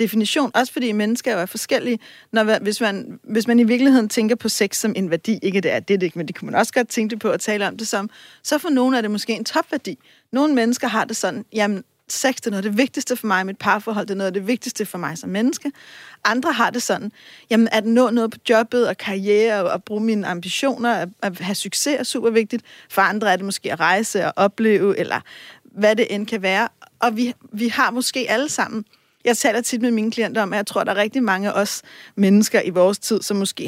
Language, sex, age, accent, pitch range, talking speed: Danish, female, 40-59, native, 205-245 Hz, 255 wpm